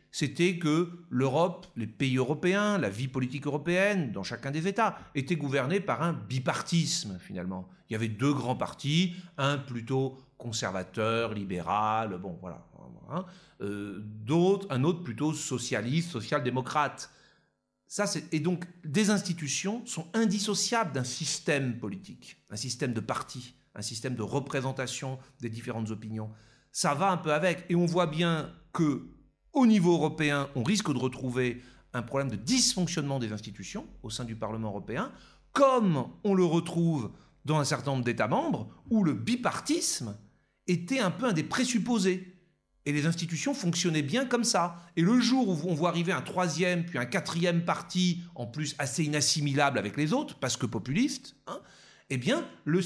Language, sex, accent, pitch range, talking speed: French, male, French, 130-180 Hz, 160 wpm